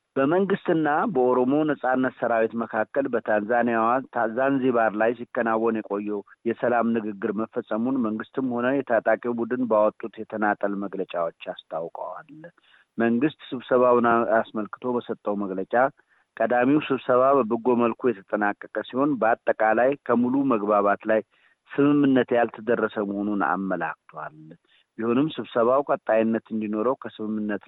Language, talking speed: Amharic, 100 wpm